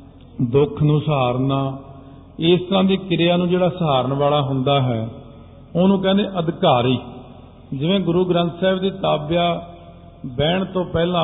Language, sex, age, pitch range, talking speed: Punjabi, male, 50-69, 140-170 Hz, 130 wpm